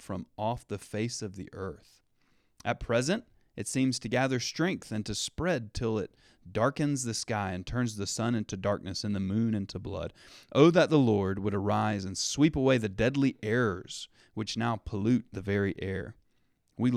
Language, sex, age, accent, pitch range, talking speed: English, male, 30-49, American, 95-125 Hz, 185 wpm